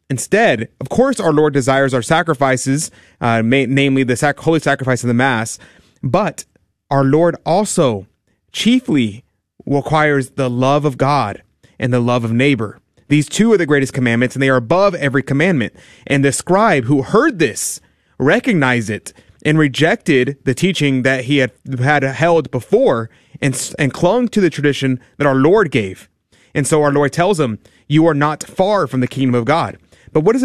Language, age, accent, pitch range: English, 30-49, American, 130-155 Hz